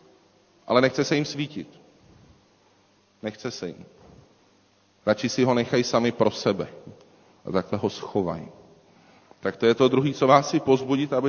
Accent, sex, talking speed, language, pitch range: native, male, 155 wpm, Czech, 105-125 Hz